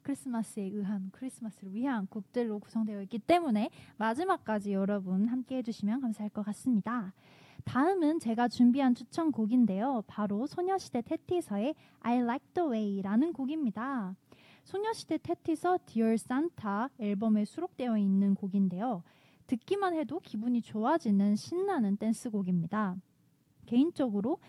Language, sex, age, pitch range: Korean, female, 20-39, 205-285 Hz